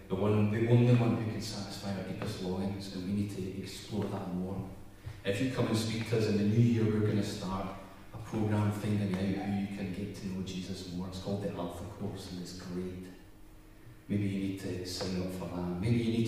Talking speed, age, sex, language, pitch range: 230 wpm, 30-49, male, English, 95-110 Hz